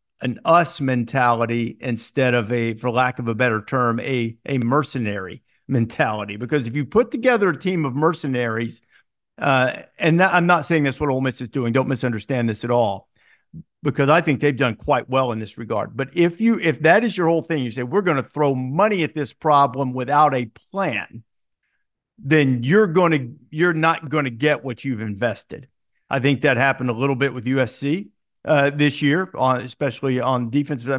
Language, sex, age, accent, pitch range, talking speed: English, male, 50-69, American, 125-155 Hz, 195 wpm